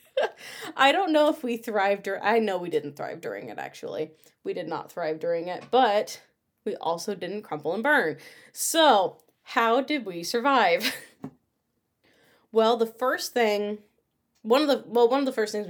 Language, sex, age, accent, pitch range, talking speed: English, female, 20-39, American, 185-230 Hz, 175 wpm